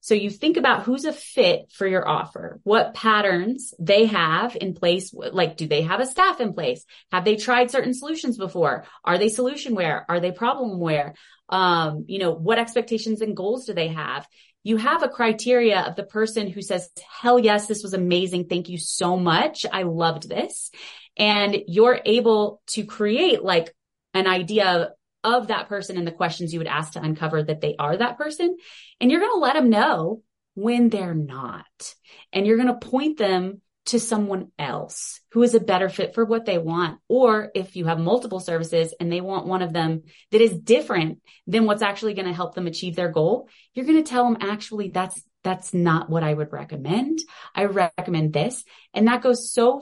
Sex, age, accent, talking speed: female, 20-39, American, 200 wpm